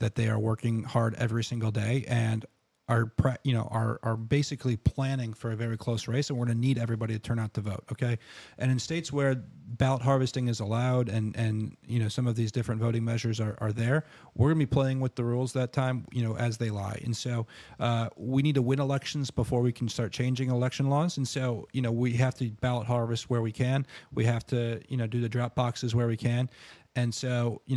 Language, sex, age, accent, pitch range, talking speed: English, male, 30-49, American, 115-135 Hz, 240 wpm